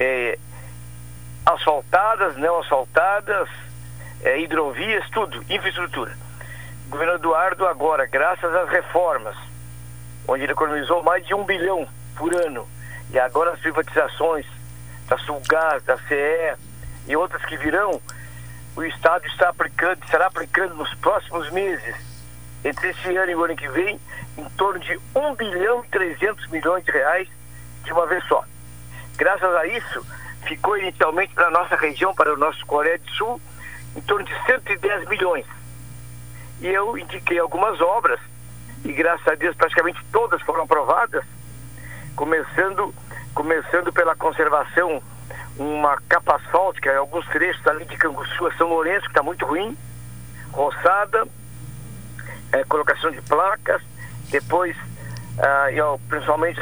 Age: 60-79